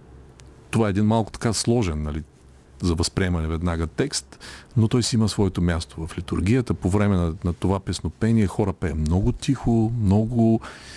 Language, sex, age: Bulgarian, male, 40-59